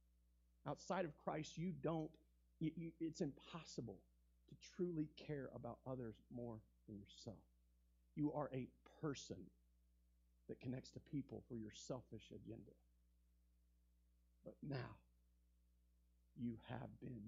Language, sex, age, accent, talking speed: English, male, 50-69, American, 110 wpm